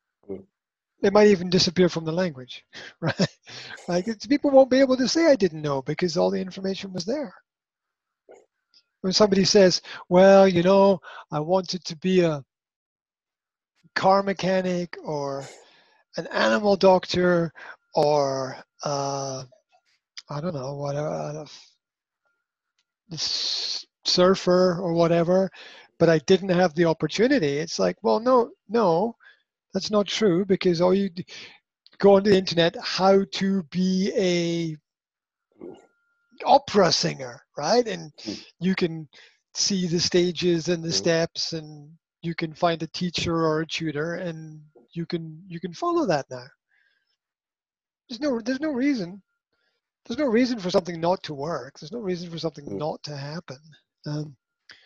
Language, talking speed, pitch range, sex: English, 140 wpm, 160-200 Hz, male